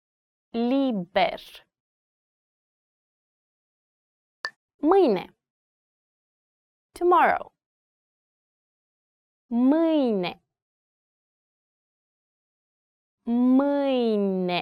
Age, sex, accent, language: 30-49, female, American, English